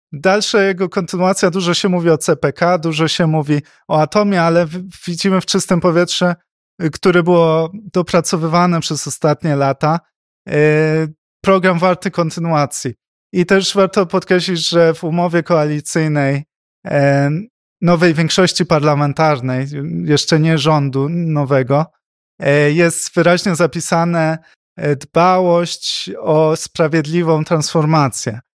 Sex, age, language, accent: male, 20-39, Polish, native